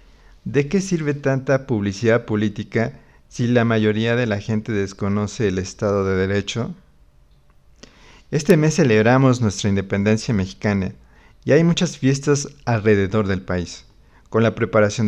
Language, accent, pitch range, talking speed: Spanish, Mexican, 100-125 Hz, 130 wpm